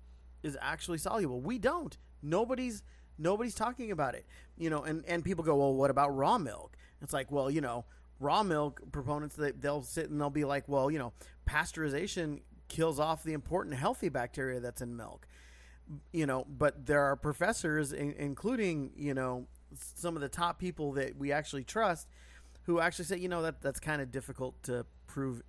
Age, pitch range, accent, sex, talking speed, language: 30-49, 130-170 Hz, American, male, 190 wpm, English